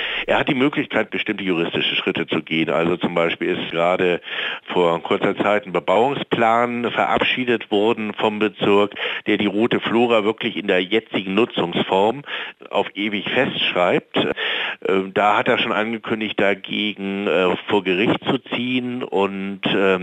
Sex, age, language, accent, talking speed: male, 60-79, German, German, 140 wpm